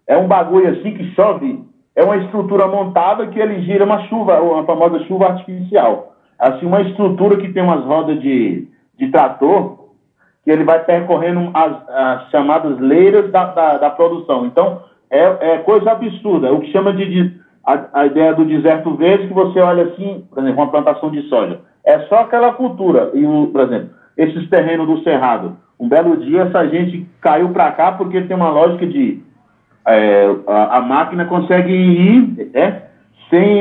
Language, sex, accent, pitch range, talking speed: Portuguese, male, Brazilian, 155-210 Hz, 180 wpm